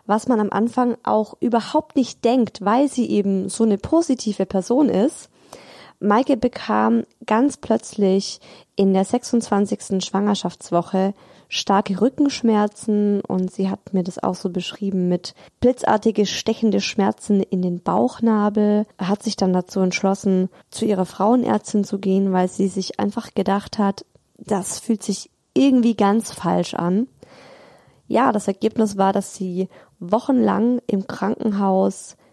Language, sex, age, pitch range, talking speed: German, female, 20-39, 190-225 Hz, 135 wpm